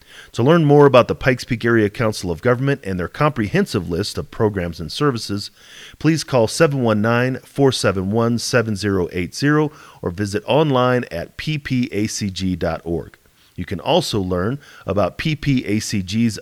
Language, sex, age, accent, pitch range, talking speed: English, male, 40-59, American, 100-135 Hz, 120 wpm